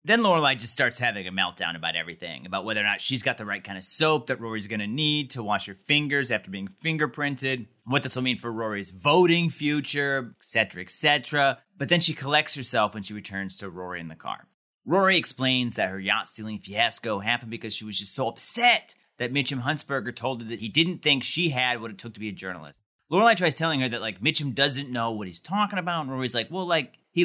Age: 30-49